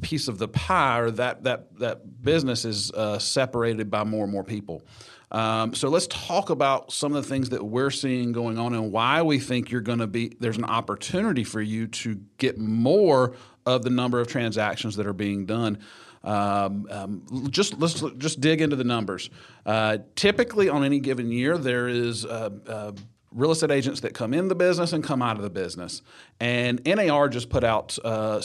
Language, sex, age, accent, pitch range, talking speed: English, male, 40-59, American, 110-135 Hz, 200 wpm